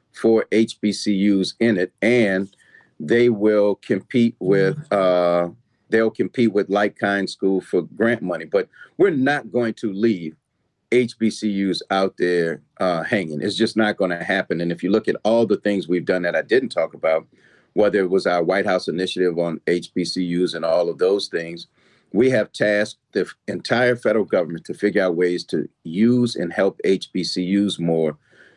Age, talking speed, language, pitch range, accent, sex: 40-59, 170 wpm, English, 95-115 Hz, American, male